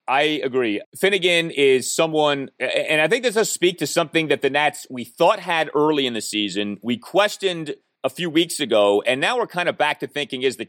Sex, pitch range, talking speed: male, 120-170 Hz, 220 wpm